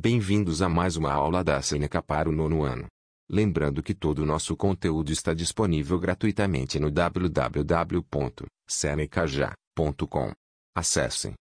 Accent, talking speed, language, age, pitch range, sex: Brazilian, 120 wpm, Portuguese, 40-59, 75-90 Hz, male